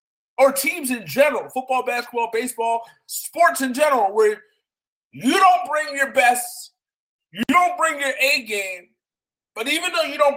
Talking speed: 155 wpm